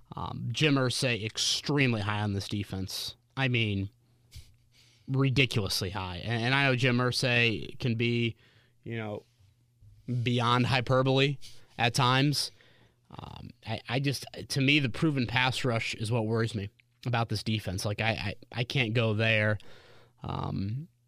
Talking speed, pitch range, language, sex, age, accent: 140 wpm, 115-135 Hz, English, male, 30-49, American